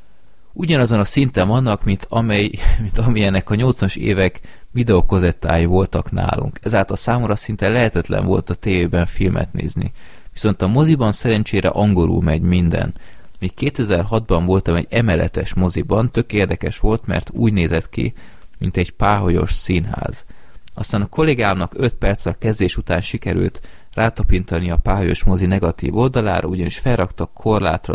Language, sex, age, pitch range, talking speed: Hungarian, male, 30-49, 90-110 Hz, 135 wpm